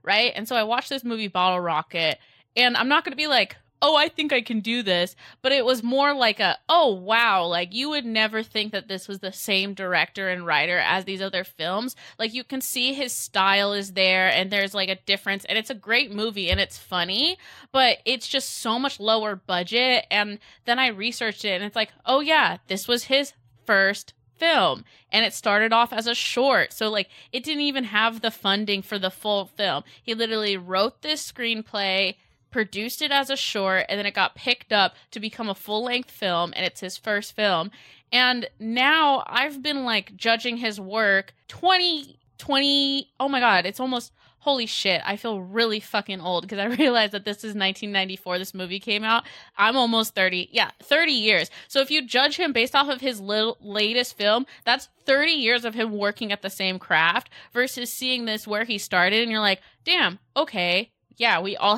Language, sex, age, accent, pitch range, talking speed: English, female, 20-39, American, 195-250 Hz, 205 wpm